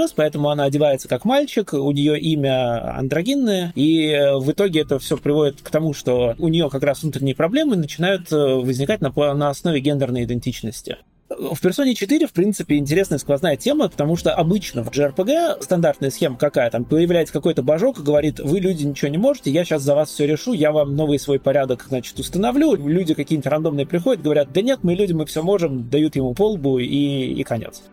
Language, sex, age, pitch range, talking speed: Russian, male, 30-49, 140-185 Hz, 185 wpm